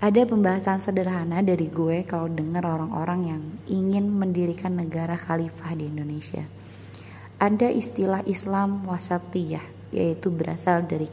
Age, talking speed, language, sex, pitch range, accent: 20-39, 120 wpm, Indonesian, female, 145-170 Hz, native